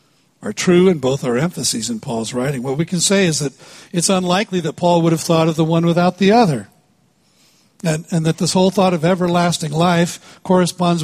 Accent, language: American, English